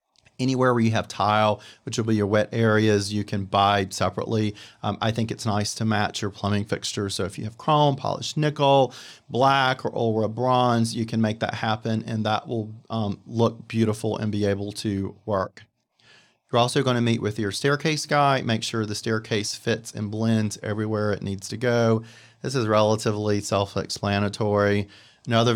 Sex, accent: male, American